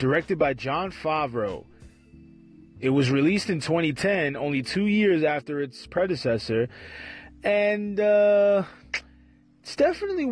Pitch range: 130-190 Hz